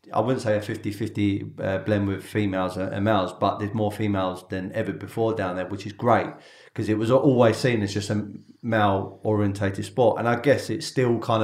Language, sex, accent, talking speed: English, male, British, 200 wpm